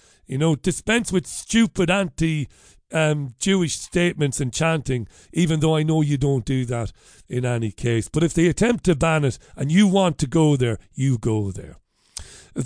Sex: male